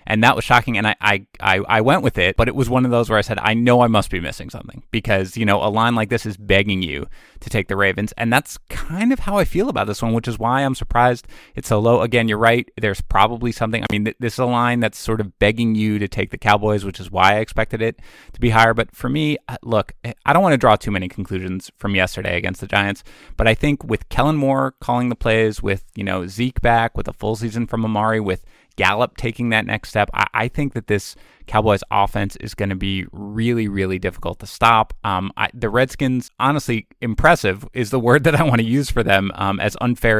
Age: 30-49